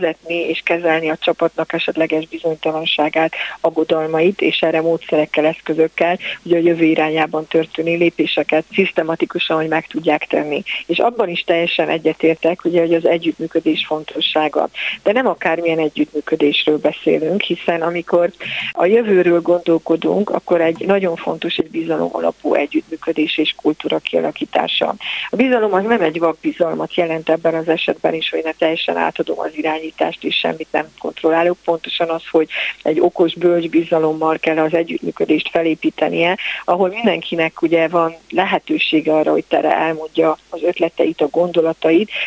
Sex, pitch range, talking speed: female, 160-175 Hz, 135 wpm